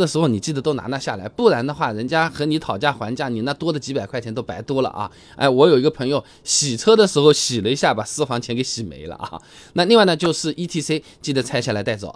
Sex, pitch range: male, 120-180 Hz